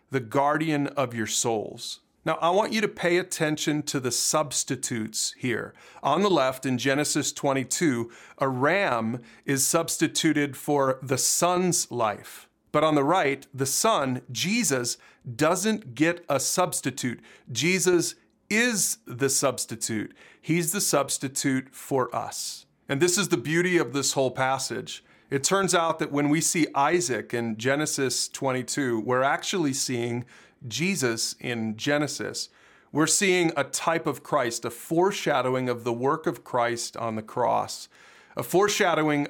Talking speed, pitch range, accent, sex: 145 wpm, 125-165 Hz, American, male